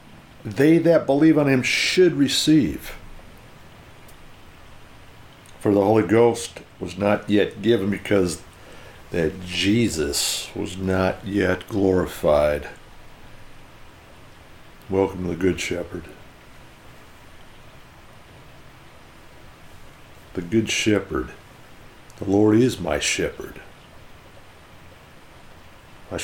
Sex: male